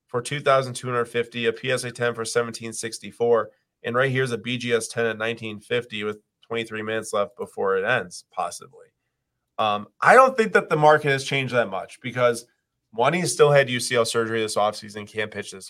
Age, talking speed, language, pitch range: 20-39, 210 wpm, English, 115-135 Hz